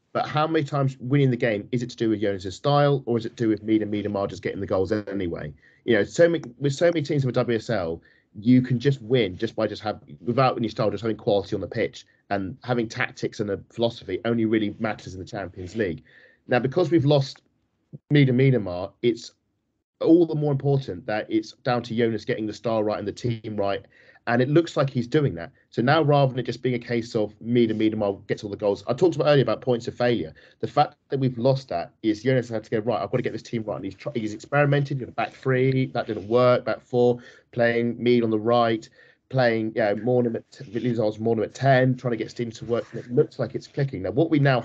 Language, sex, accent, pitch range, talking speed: English, male, British, 110-135 Hz, 260 wpm